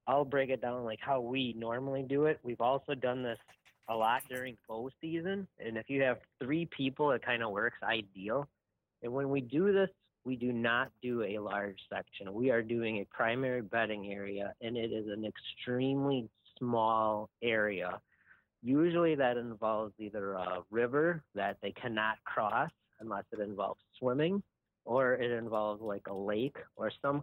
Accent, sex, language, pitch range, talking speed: American, male, English, 105-130 Hz, 170 wpm